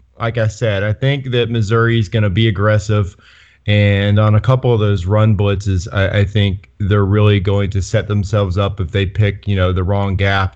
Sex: male